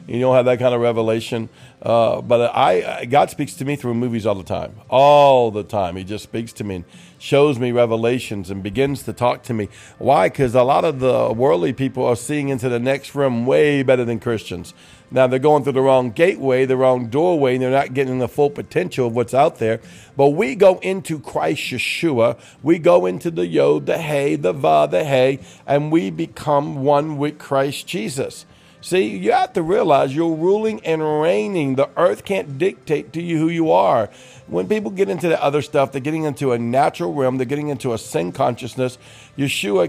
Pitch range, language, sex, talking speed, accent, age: 120-150 Hz, English, male, 210 wpm, American, 50-69